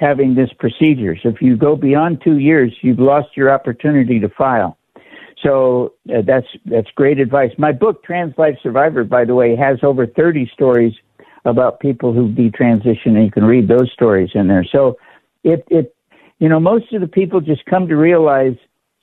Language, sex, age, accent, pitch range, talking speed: English, male, 60-79, American, 125-150 Hz, 185 wpm